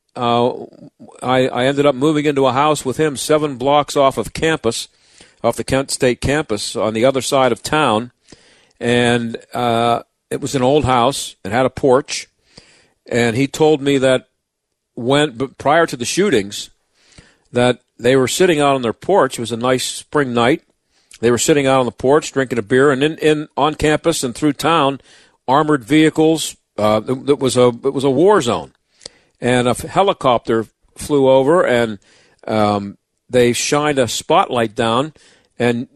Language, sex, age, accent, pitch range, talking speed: English, male, 50-69, American, 120-150 Hz, 175 wpm